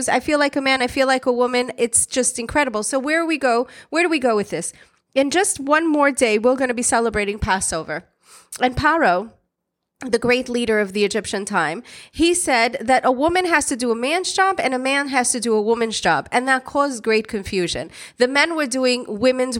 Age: 30-49